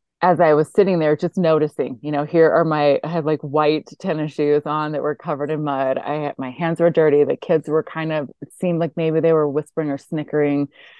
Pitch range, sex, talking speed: 145-170 Hz, female, 240 wpm